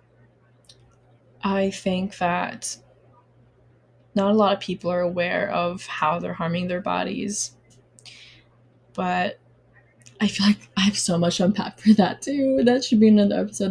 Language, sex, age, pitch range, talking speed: English, female, 20-39, 160-195 Hz, 145 wpm